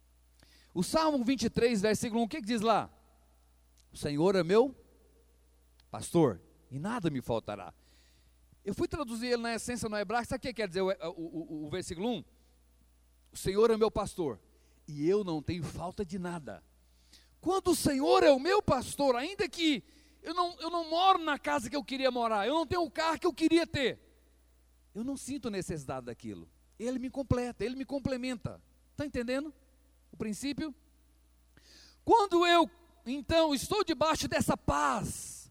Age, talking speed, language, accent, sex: 40-59, 165 wpm, Portuguese, Brazilian, male